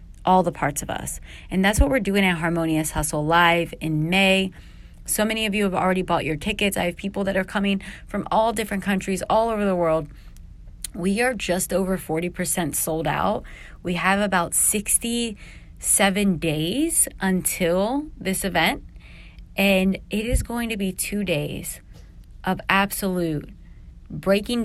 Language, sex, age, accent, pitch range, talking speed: English, female, 30-49, American, 160-205 Hz, 160 wpm